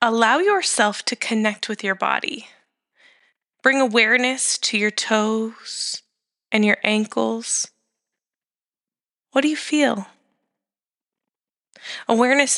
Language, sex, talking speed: English, female, 95 wpm